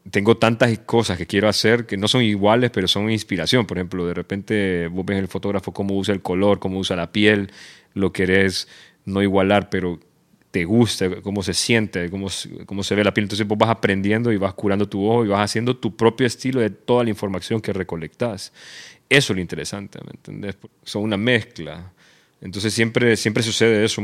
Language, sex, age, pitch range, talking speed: Spanish, male, 30-49, 95-110 Hz, 200 wpm